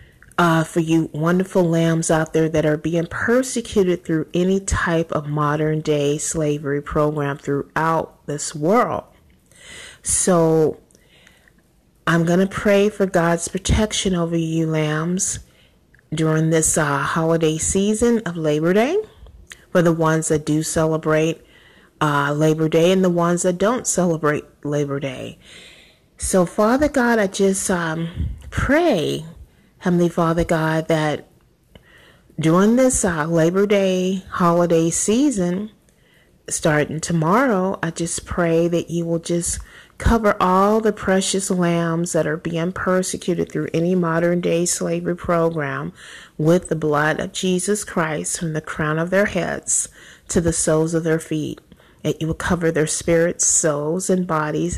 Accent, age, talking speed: American, 30-49, 140 wpm